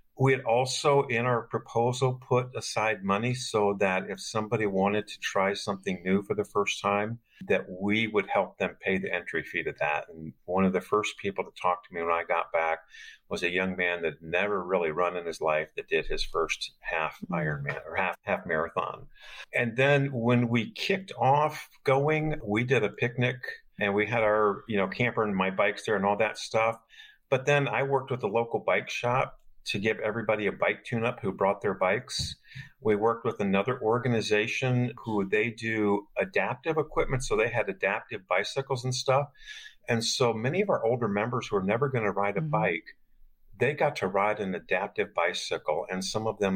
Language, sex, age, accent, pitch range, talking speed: English, male, 50-69, American, 100-130 Hz, 200 wpm